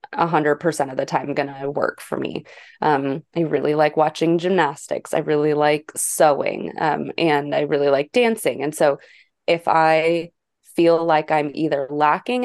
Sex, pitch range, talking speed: female, 150-170 Hz, 175 wpm